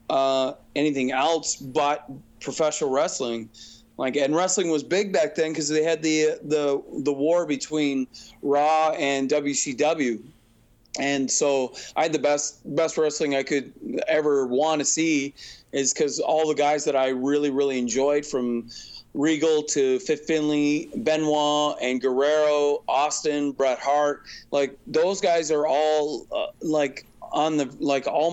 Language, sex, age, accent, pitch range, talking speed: English, male, 30-49, American, 130-155 Hz, 150 wpm